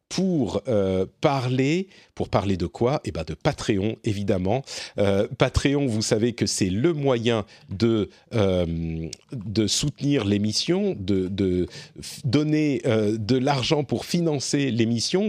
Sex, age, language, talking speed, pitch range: male, 40-59, French, 135 wpm, 105-145 Hz